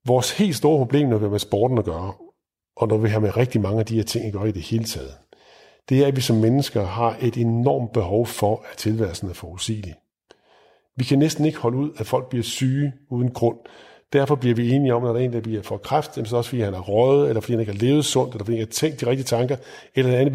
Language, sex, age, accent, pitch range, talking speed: Danish, male, 50-69, native, 110-135 Hz, 275 wpm